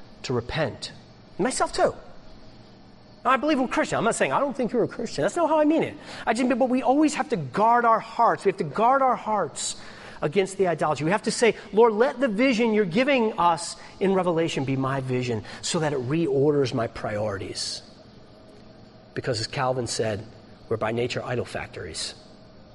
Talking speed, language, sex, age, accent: 195 wpm, English, male, 40-59, American